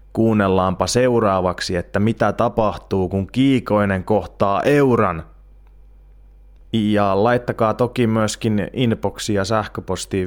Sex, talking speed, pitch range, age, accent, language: male, 95 wpm, 90-110 Hz, 30-49, native, Finnish